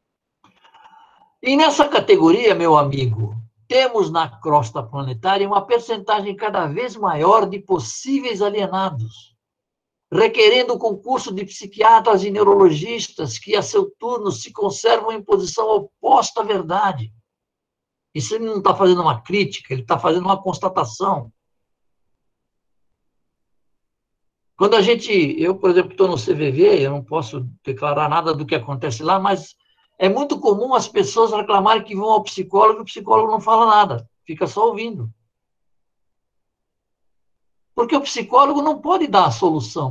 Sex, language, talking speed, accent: male, Portuguese, 140 wpm, Brazilian